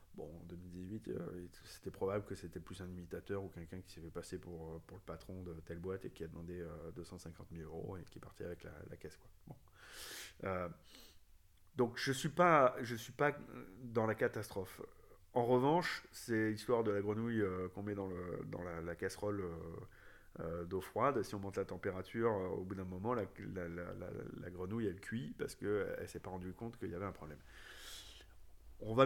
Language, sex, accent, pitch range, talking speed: French, male, French, 90-105 Hz, 215 wpm